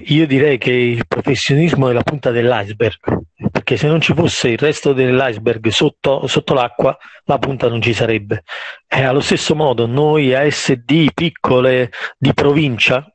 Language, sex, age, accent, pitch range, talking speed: Italian, male, 40-59, native, 125-155 Hz, 155 wpm